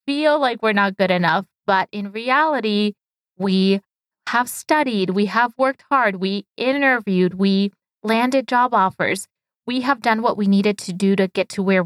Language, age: English, 20-39